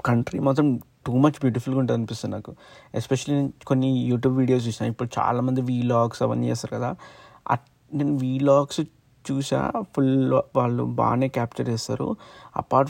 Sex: male